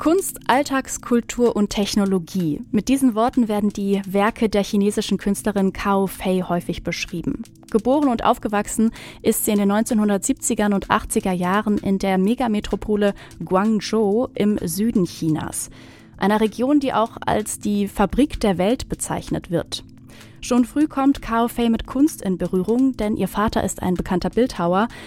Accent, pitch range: German, 190-235 Hz